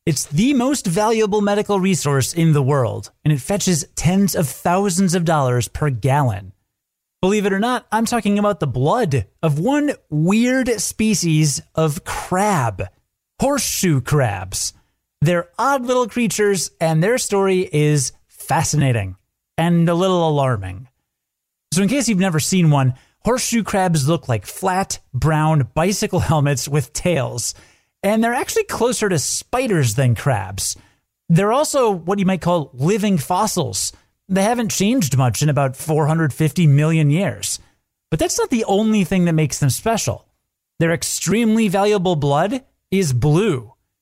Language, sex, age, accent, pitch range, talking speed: English, male, 30-49, American, 140-200 Hz, 145 wpm